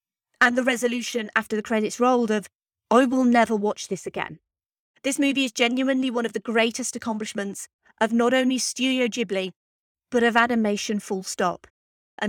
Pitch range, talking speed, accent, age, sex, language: 195-240 Hz, 165 wpm, British, 30-49, female, English